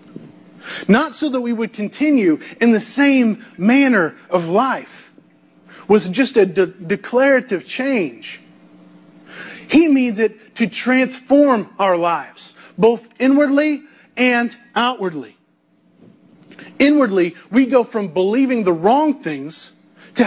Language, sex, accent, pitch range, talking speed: English, male, American, 165-255 Hz, 110 wpm